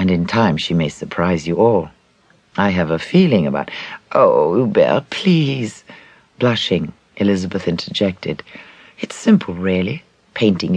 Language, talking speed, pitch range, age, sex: English, 130 wpm, 90-150 Hz, 60-79, female